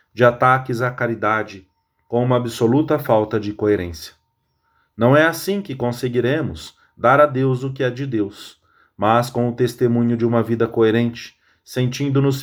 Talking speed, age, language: 155 wpm, 40-59, English